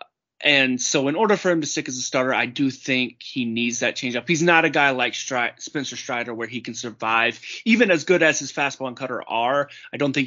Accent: American